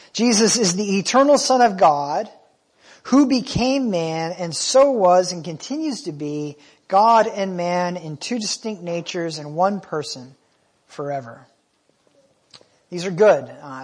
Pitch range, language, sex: 155-220 Hz, English, male